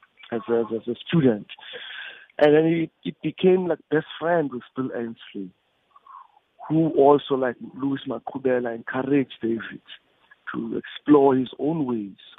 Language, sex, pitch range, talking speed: English, male, 120-155 Hz, 130 wpm